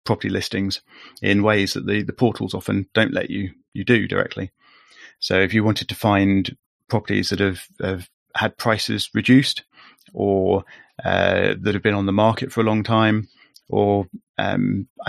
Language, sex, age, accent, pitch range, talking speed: English, male, 30-49, British, 90-105 Hz, 165 wpm